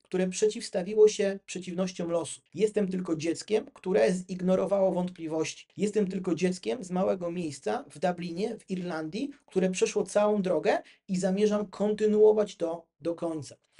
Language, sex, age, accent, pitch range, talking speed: Polish, male, 30-49, native, 165-205 Hz, 135 wpm